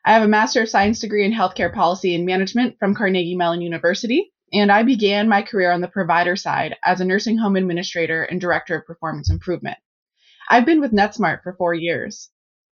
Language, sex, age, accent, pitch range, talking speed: English, female, 20-39, American, 180-235 Hz, 200 wpm